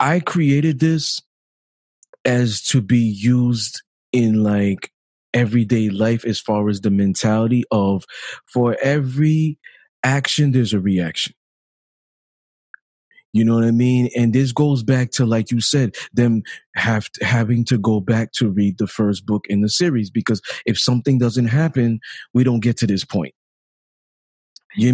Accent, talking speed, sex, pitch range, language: American, 150 wpm, male, 105-125 Hz, English